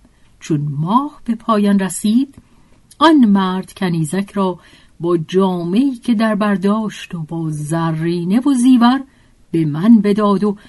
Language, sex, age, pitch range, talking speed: Persian, female, 50-69, 165-240 Hz, 130 wpm